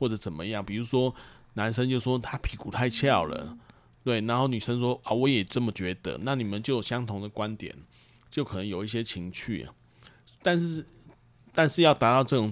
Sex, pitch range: male, 105-130 Hz